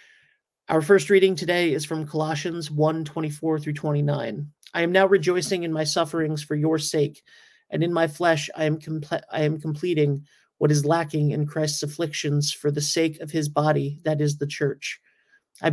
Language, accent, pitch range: English, American, 150-170 Hz